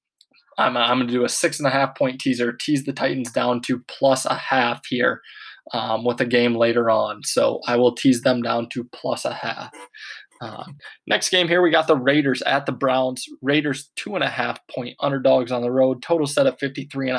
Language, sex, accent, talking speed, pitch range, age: English, male, American, 215 wpm, 130-150 Hz, 20-39